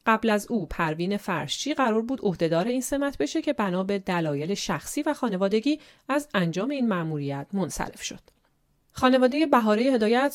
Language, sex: Persian, female